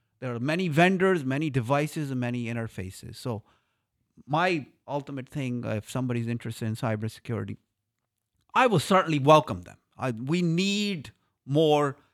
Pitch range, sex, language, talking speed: 115-145 Hz, male, English, 140 wpm